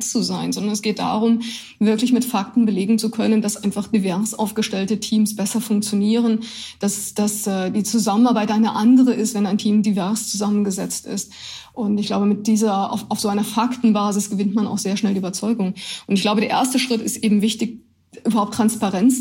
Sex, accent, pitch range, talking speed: female, German, 205-225 Hz, 185 wpm